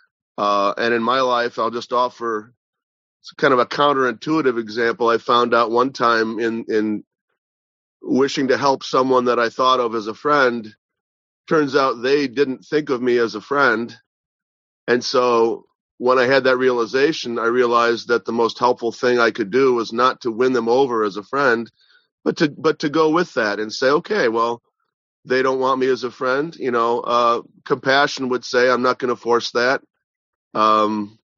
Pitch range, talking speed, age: 110-130 Hz, 185 wpm, 40-59